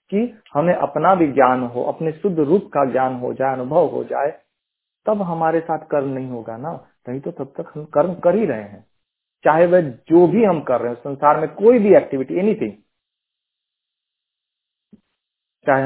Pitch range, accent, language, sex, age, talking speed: 130-170 Hz, native, Hindi, male, 40-59, 180 wpm